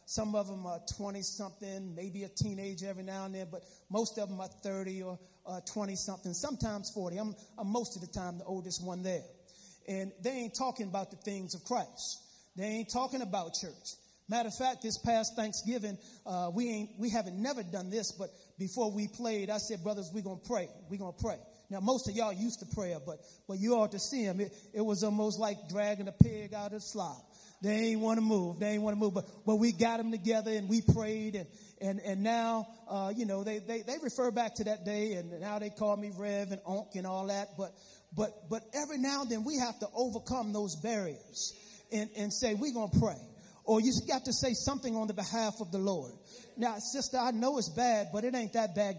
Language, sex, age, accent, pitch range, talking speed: English, male, 30-49, American, 195-230 Hz, 235 wpm